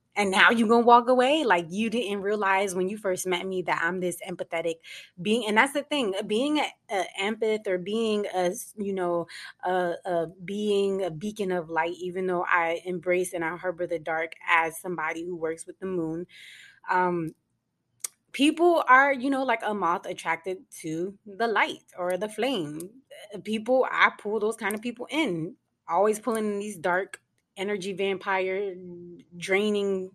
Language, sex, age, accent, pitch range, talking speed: English, female, 20-39, American, 175-215 Hz, 175 wpm